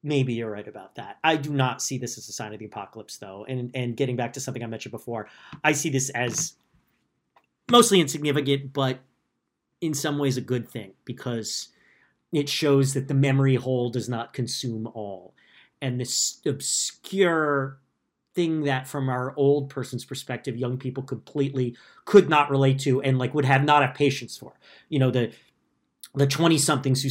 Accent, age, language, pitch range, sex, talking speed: American, 40-59, English, 120-140 Hz, male, 180 wpm